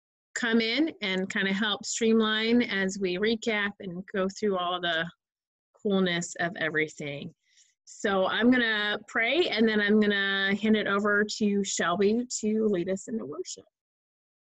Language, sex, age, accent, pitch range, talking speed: English, female, 30-49, American, 175-215 Hz, 150 wpm